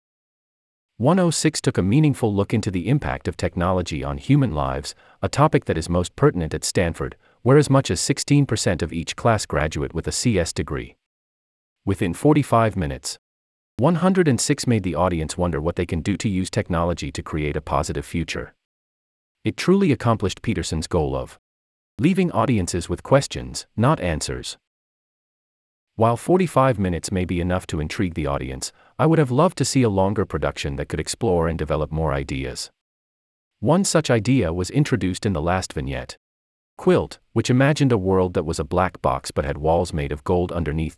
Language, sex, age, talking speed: English, male, 40-59, 175 wpm